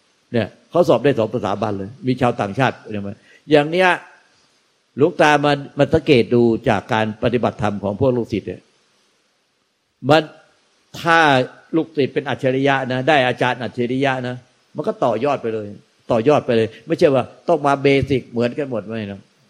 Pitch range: 110-135 Hz